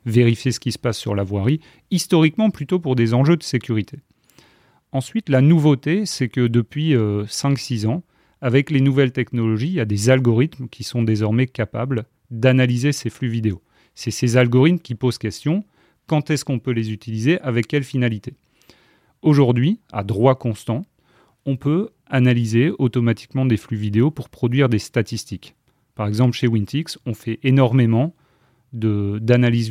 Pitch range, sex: 115-140 Hz, male